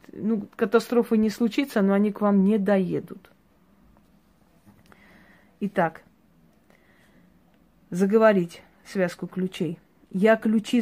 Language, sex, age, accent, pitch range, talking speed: Russian, female, 30-49, native, 185-215 Hz, 90 wpm